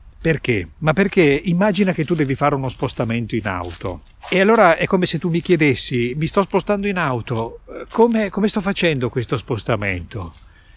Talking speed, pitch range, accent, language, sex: 175 wpm, 110-170 Hz, native, Italian, male